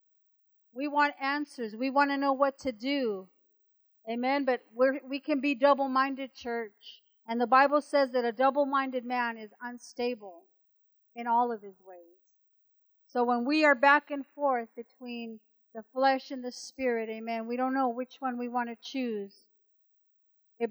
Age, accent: 50-69, American